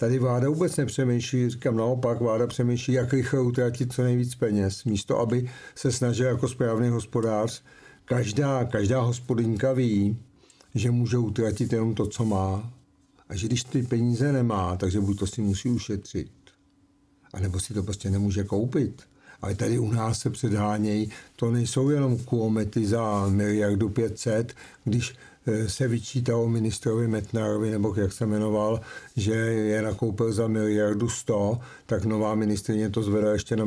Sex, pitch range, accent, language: male, 105-120 Hz, native, Czech